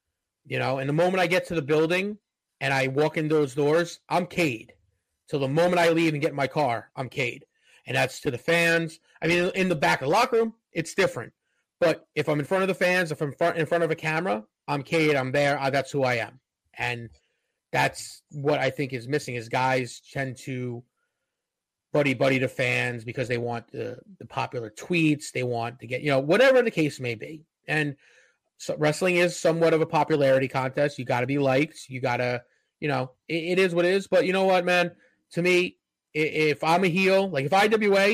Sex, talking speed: male, 220 wpm